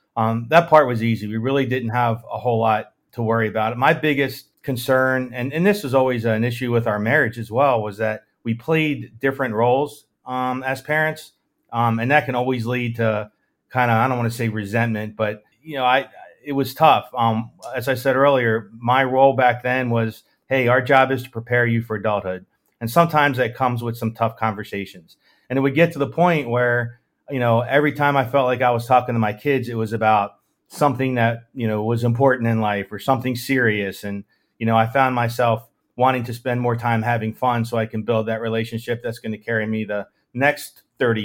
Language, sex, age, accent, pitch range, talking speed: English, male, 40-59, American, 110-130 Hz, 220 wpm